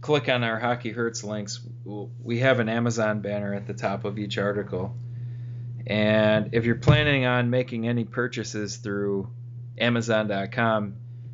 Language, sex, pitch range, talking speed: English, male, 110-120 Hz, 145 wpm